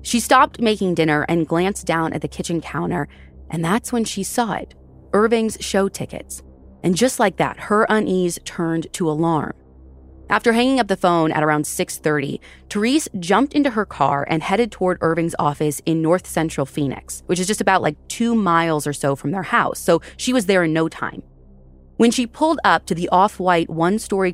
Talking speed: 190 wpm